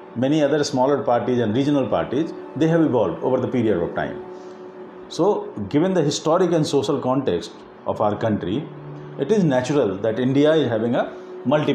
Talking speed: 175 wpm